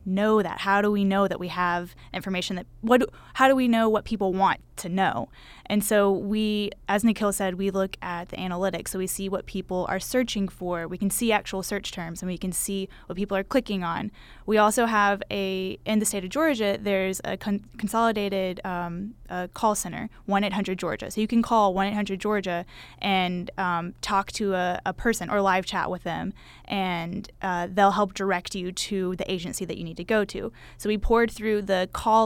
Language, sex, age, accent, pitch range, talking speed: English, female, 20-39, American, 185-210 Hz, 205 wpm